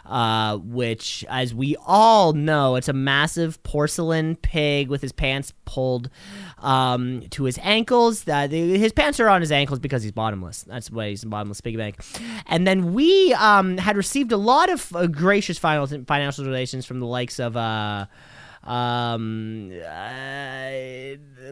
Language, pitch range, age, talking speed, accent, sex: English, 125-185 Hz, 20-39, 155 wpm, American, male